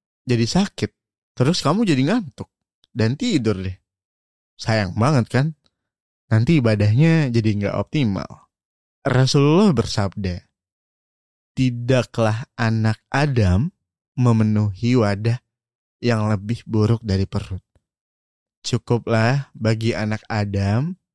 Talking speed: 95 wpm